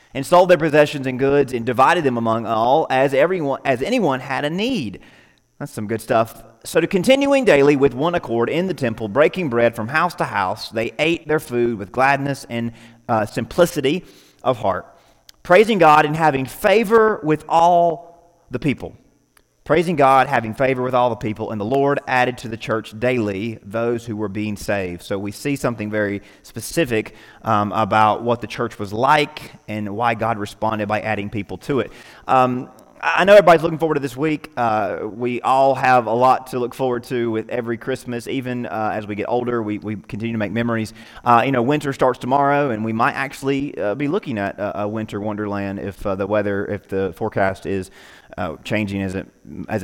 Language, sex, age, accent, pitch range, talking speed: English, male, 30-49, American, 110-145 Hz, 200 wpm